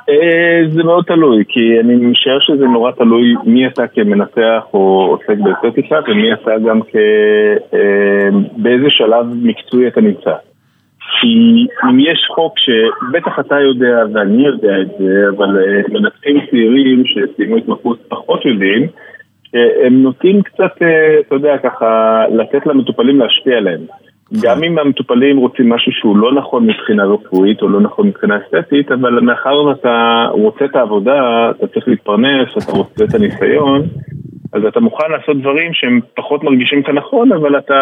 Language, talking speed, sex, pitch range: Hebrew, 145 wpm, male, 115-185 Hz